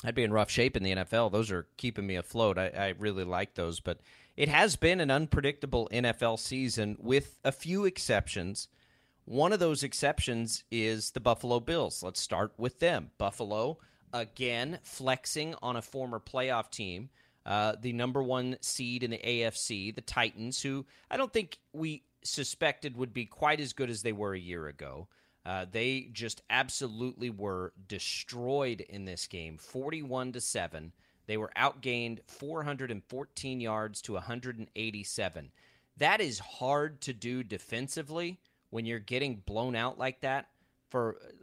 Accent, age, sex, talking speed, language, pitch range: American, 30-49, male, 160 wpm, English, 105-130 Hz